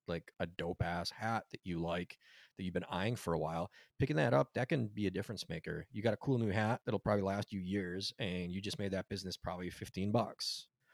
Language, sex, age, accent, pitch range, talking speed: English, male, 30-49, American, 85-110 Hz, 245 wpm